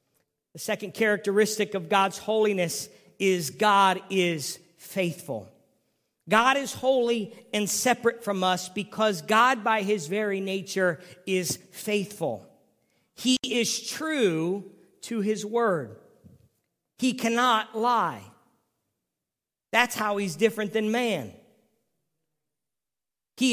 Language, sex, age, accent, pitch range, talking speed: English, male, 50-69, American, 195-250 Hz, 105 wpm